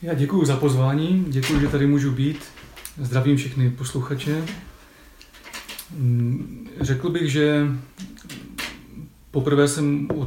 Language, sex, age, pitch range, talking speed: Czech, male, 40-59, 130-145 Hz, 105 wpm